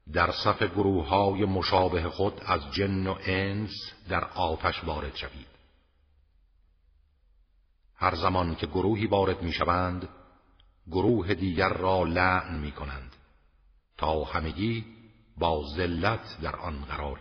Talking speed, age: 110 wpm, 50-69